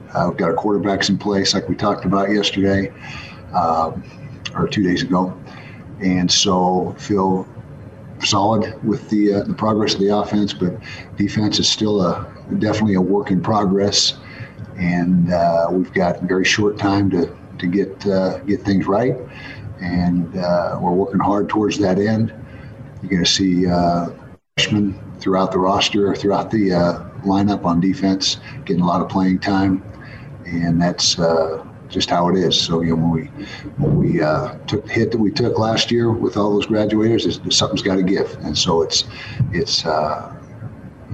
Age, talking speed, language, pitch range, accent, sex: 50-69, 175 wpm, English, 90-105 Hz, American, male